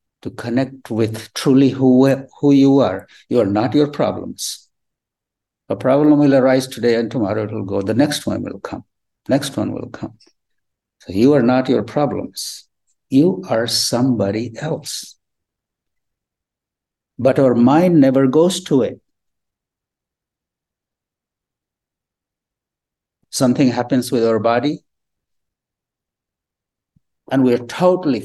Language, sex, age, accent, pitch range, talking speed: English, male, 60-79, Indian, 105-135 Hz, 125 wpm